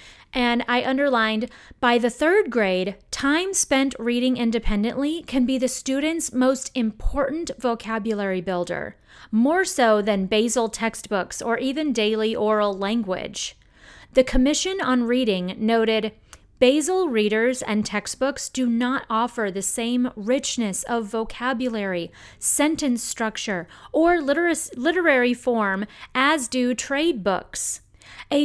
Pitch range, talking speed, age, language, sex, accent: 225-280 Hz, 120 wpm, 30-49, English, female, American